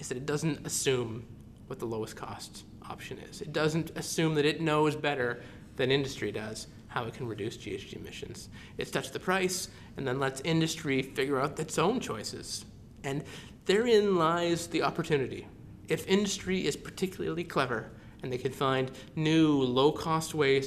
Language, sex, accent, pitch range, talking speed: English, male, American, 130-165 Hz, 165 wpm